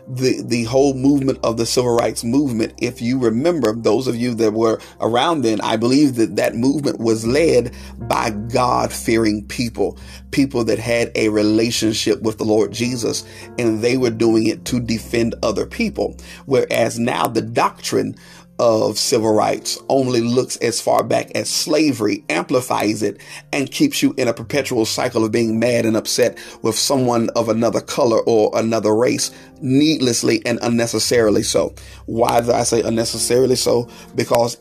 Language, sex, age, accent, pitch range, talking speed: English, male, 40-59, American, 115-130 Hz, 165 wpm